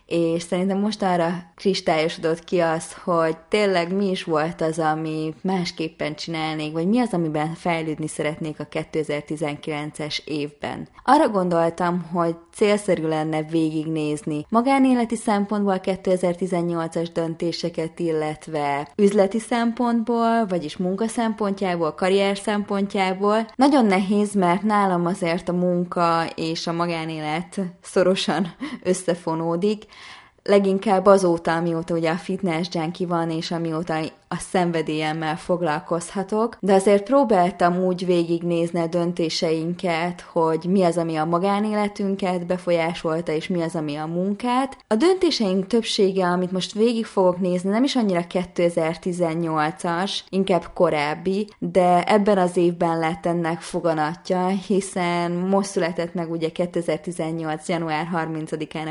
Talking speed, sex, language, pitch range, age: 120 wpm, female, Hungarian, 165-195 Hz, 20-39